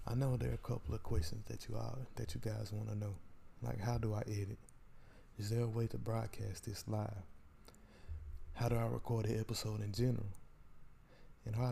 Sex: male